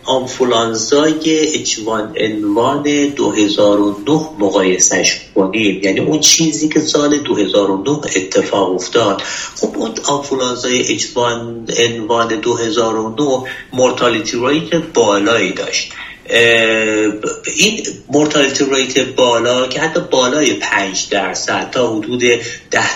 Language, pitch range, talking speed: Persian, 110-155 Hz, 100 wpm